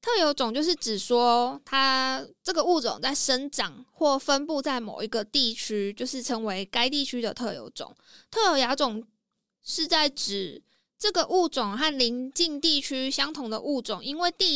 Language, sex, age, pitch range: Chinese, female, 20-39, 225-295 Hz